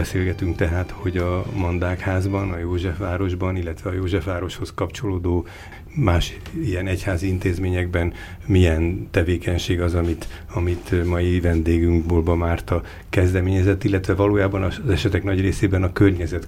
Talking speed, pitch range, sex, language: 120 wpm, 85-100 Hz, male, Hungarian